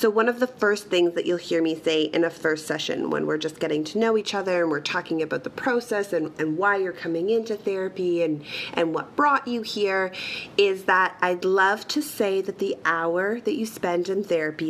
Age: 30-49